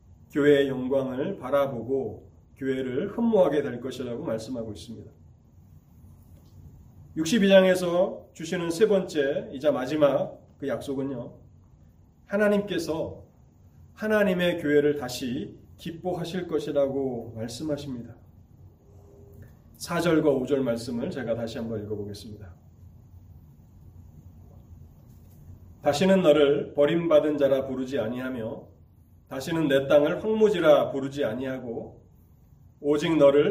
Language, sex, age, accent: Korean, male, 30-49, native